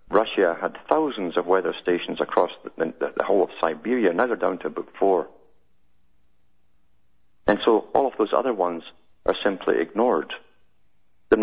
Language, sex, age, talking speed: English, male, 50-69, 160 wpm